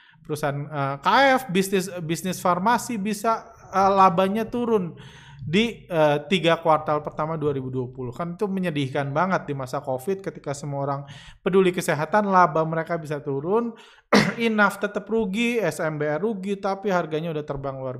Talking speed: 140 wpm